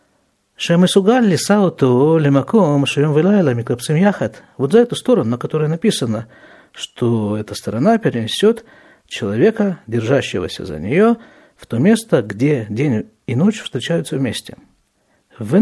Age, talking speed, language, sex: 50-69, 105 wpm, Russian, male